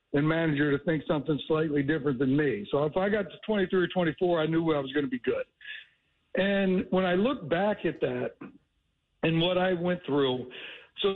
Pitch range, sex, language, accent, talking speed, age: 155-195 Hz, male, English, American, 205 wpm, 60-79